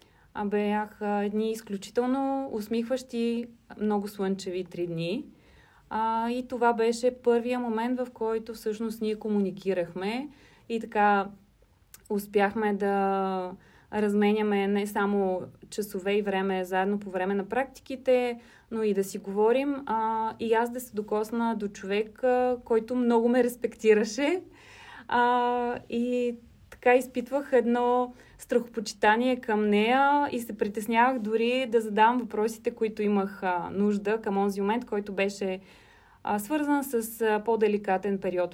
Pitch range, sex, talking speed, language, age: 200-235 Hz, female, 120 wpm, Bulgarian, 30-49